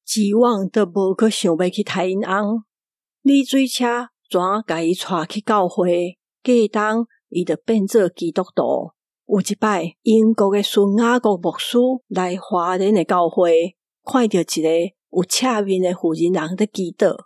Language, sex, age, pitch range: Chinese, female, 50-69, 175-220 Hz